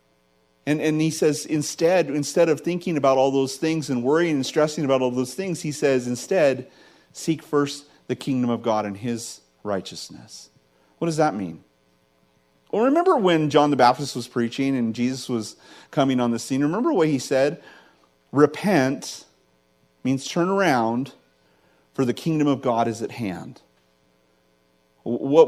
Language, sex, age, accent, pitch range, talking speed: English, male, 40-59, American, 105-155 Hz, 160 wpm